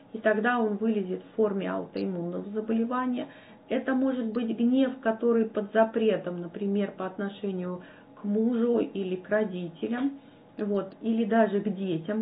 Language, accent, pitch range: Russian, native, 200-240 Hz